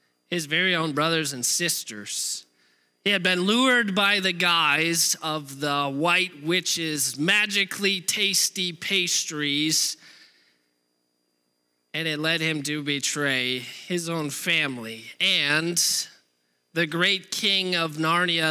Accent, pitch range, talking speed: American, 150-185 Hz, 115 wpm